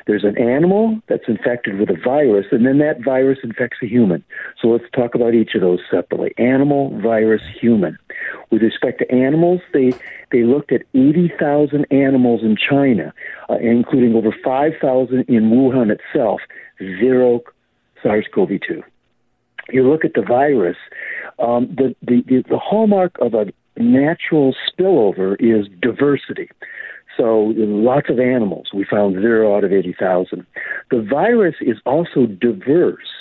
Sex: male